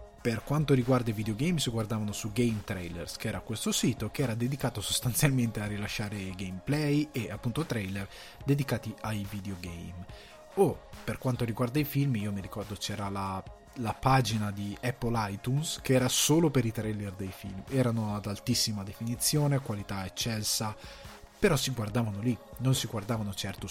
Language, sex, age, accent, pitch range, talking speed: Italian, male, 20-39, native, 105-130 Hz, 165 wpm